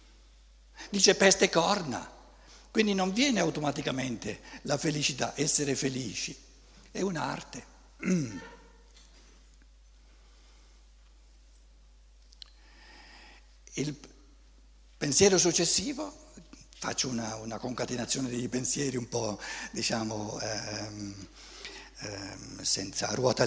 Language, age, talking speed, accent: Italian, 60-79, 75 wpm, native